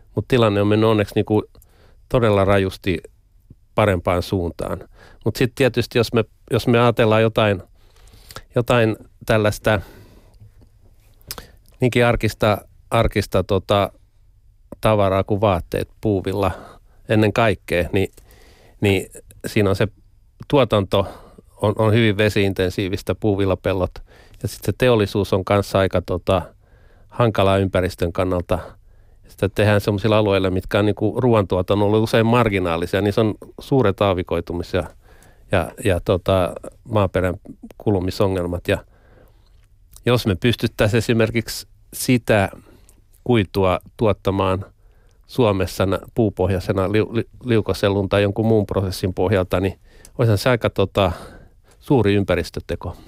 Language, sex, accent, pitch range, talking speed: Finnish, male, native, 95-110 Hz, 110 wpm